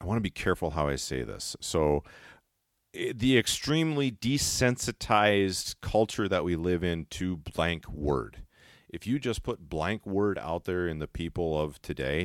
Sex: male